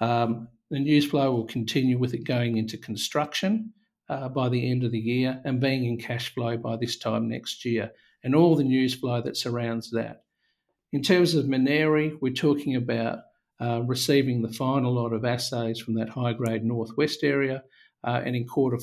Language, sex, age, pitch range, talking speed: English, male, 50-69, 115-135 Hz, 190 wpm